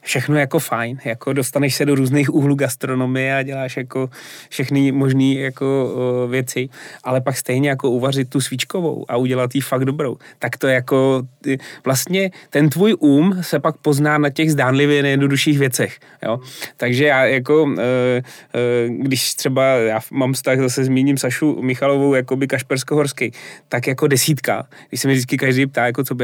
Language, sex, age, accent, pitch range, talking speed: Czech, male, 30-49, native, 130-155 Hz, 175 wpm